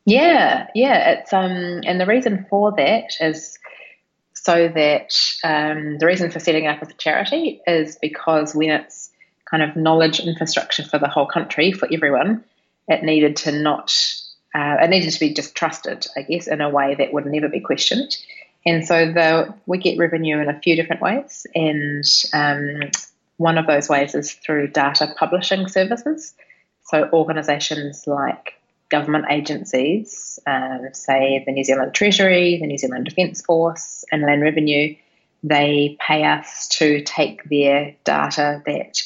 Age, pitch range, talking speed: 30-49, 145-170 Hz, 160 wpm